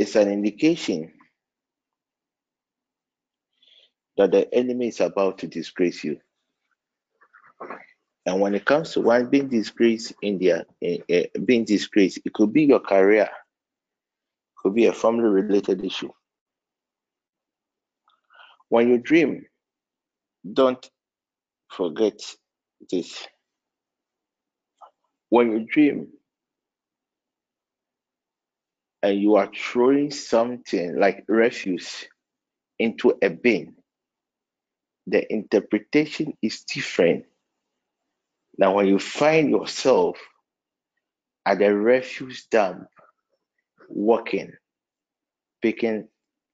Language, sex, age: English, male, 50-69